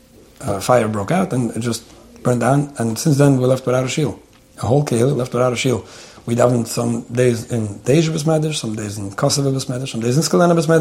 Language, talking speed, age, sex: English, 215 wpm, 30-49, male